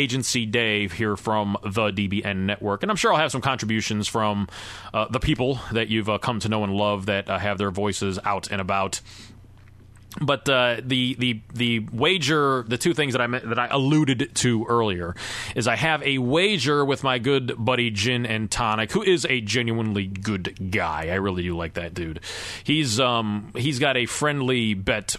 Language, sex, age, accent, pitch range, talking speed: English, male, 30-49, American, 105-130 Hz, 195 wpm